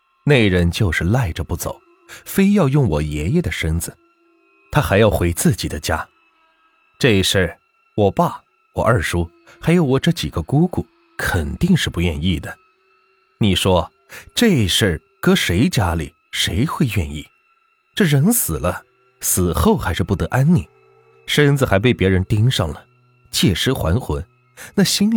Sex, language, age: male, Chinese, 30-49